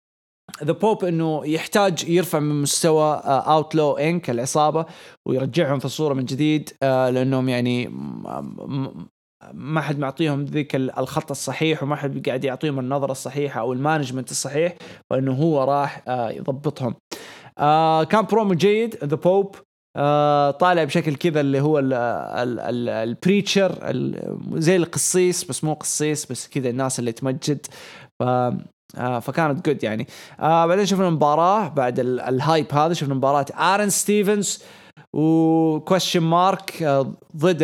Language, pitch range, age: English, 135-170 Hz, 20-39